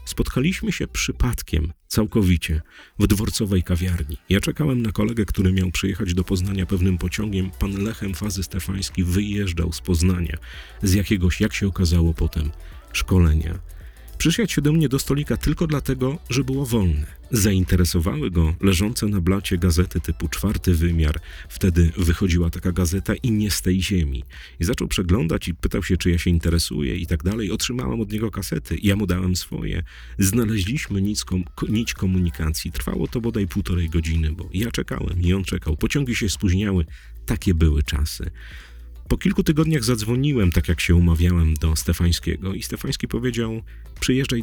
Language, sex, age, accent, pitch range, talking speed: Polish, male, 40-59, native, 80-105 Hz, 155 wpm